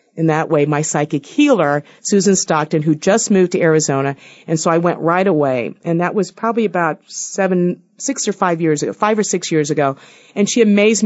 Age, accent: 50-69, American